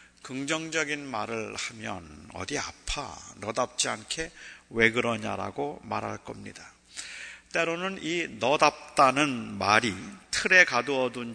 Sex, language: male, Korean